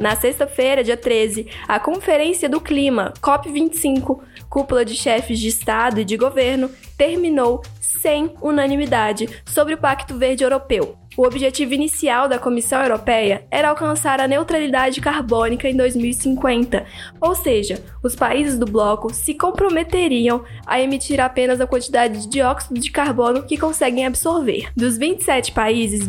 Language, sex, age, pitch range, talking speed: Portuguese, female, 10-29, 240-290 Hz, 140 wpm